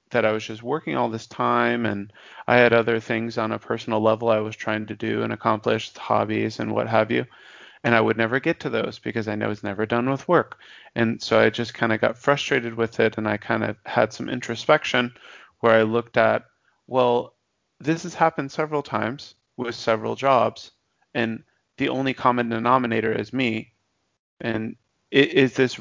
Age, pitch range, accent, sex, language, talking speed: 30-49, 110-125 Hz, American, male, English, 195 wpm